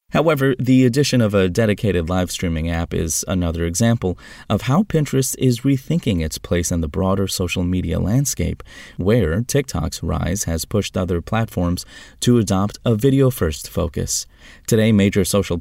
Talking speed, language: 155 wpm, English